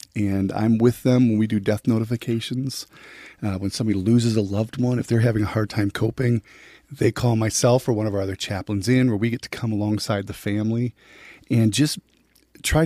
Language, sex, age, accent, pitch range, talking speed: English, male, 40-59, American, 100-120 Hz, 205 wpm